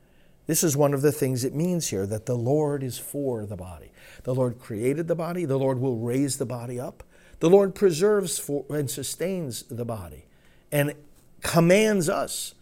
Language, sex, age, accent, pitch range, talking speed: English, male, 50-69, American, 120-160 Hz, 180 wpm